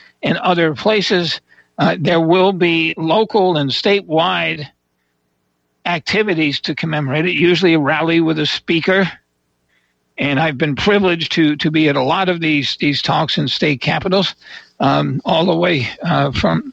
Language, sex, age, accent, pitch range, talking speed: English, male, 60-79, American, 145-180 Hz, 155 wpm